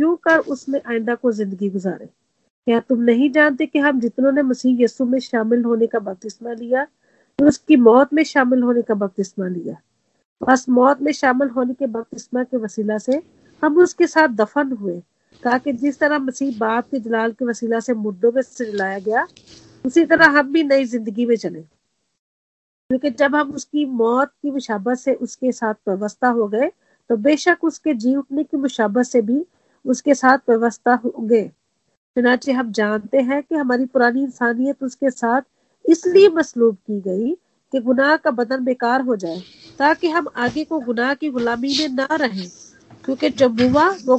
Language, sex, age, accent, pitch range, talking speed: Hindi, female, 50-69, native, 235-290 Hz, 125 wpm